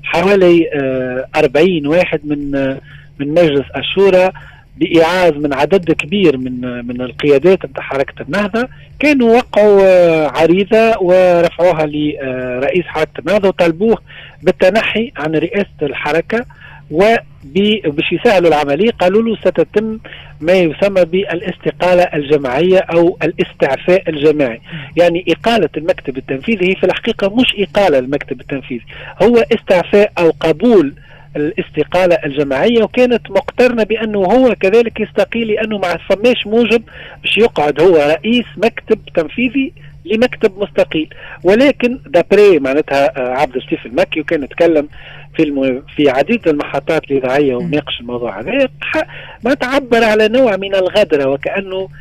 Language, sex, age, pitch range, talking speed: Arabic, male, 40-59, 145-205 Hz, 115 wpm